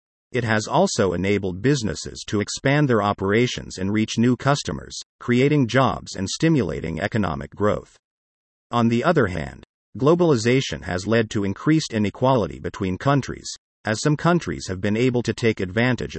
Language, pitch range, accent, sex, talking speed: English, 95-130 Hz, American, male, 150 wpm